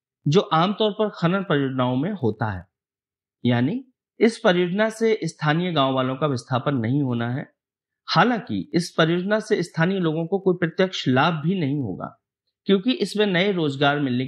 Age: 50-69